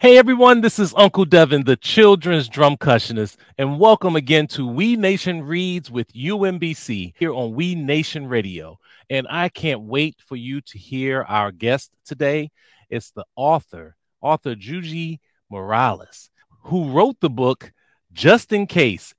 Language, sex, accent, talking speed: English, male, American, 150 wpm